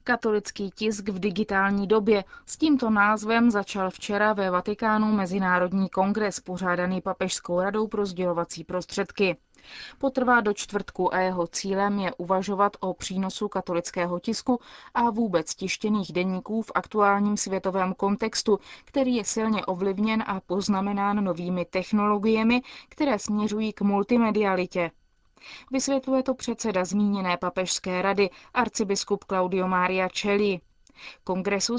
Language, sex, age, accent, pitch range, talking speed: Czech, female, 20-39, native, 185-225 Hz, 120 wpm